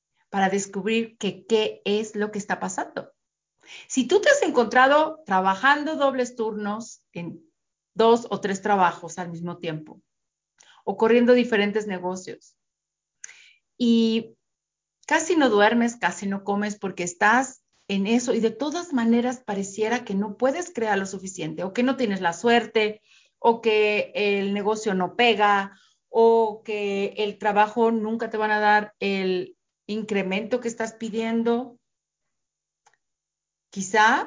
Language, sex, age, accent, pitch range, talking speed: English, female, 40-59, Mexican, 190-235 Hz, 135 wpm